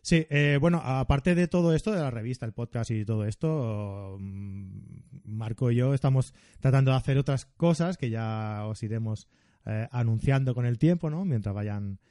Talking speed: 180 wpm